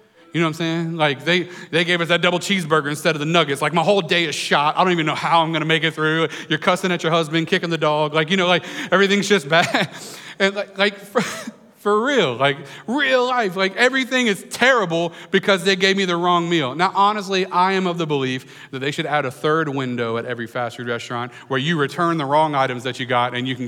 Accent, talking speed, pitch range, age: American, 250 wpm, 135-190 Hz, 40-59